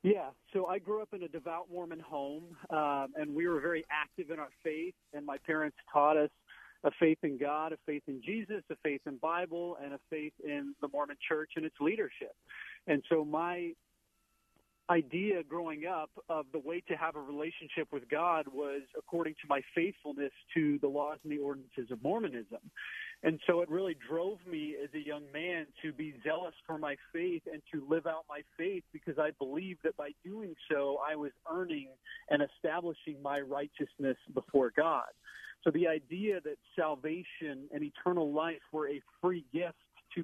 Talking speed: 185 wpm